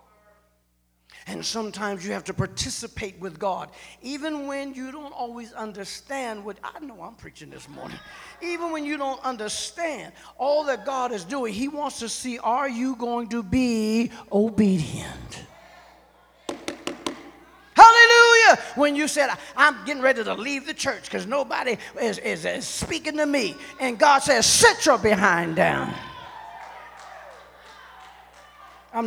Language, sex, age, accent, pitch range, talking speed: English, male, 50-69, American, 210-305 Hz, 140 wpm